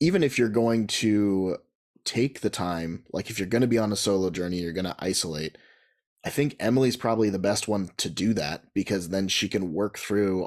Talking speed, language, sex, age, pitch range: 220 wpm, English, male, 30-49, 95-115 Hz